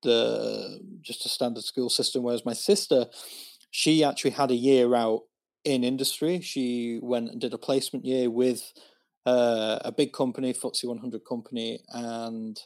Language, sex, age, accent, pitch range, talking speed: English, male, 30-49, British, 115-135 Hz, 155 wpm